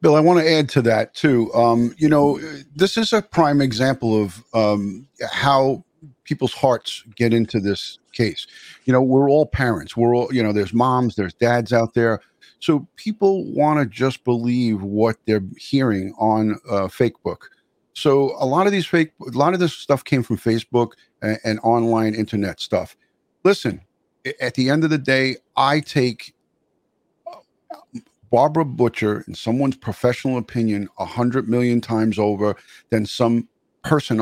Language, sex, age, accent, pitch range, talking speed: English, male, 50-69, American, 115-140 Hz, 170 wpm